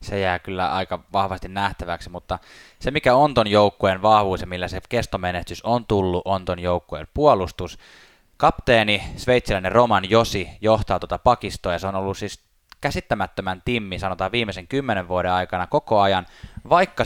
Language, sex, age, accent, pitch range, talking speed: Finnish, male, 20-39, native, 90-115 Hz, 160 wpm